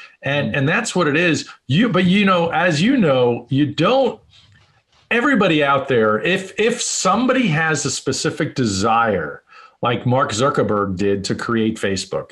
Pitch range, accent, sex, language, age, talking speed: 120-160 Hz, American, male, English, 40-59, 155 wpm